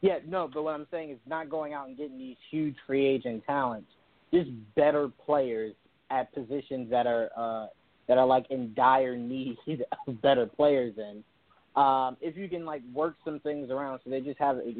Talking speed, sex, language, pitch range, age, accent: 200 wpm, male, English, 125-150 Hz, 20-39, American